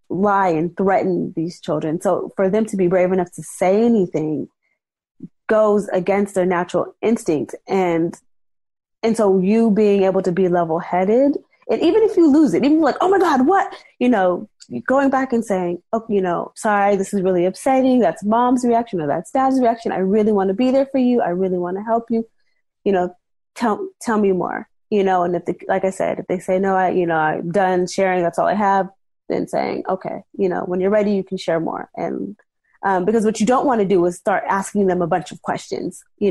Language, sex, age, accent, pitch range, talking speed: English, female, 20-39, American, 185-225 Hz, 220 wpm